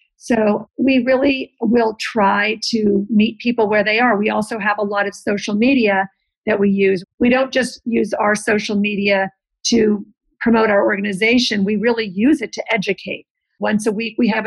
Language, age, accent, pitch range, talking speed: English, 50-69, American, 205-245 Hz, 185 wpm